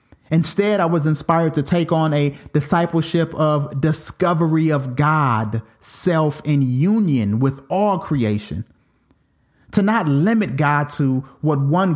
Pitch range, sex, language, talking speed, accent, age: 135-175 Hz, male, English, 130 wpm, American, 30-49